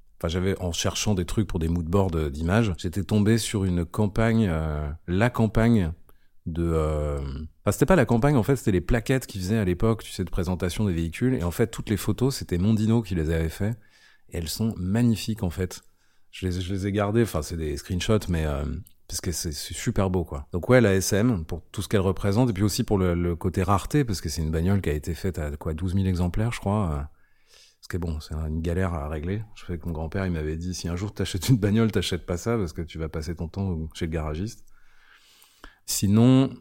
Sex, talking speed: male, 240 wpm